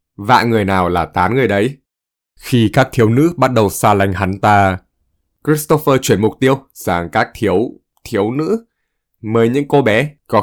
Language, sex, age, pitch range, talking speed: Vietnamese, male, 20-39, 95-135 Hz, 180 wpm